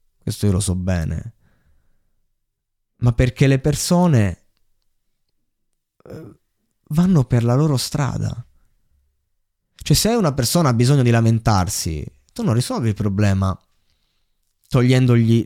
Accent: native